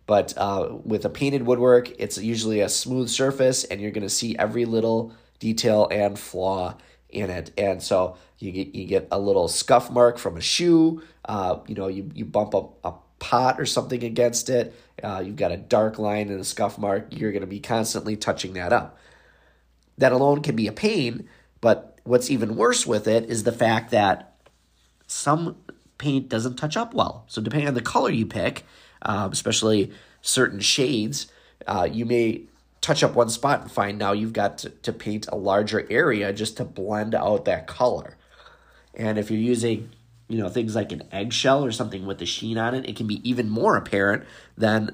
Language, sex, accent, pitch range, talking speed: English, male, American, 105-125 Hz, 190 wpm